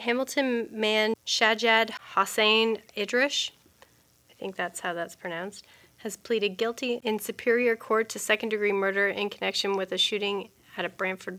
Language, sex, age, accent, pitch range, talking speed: English, female, 30-49, American, 190-220 Hz, 150 wpm